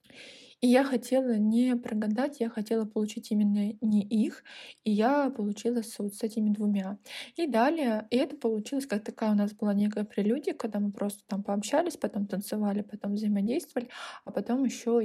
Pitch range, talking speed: 210-240 Hz, 170 wpm